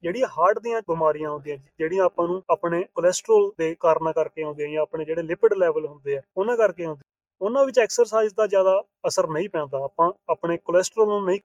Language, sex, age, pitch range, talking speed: Punjabi, male, 30-49, 160-205 Hz, 195 wpm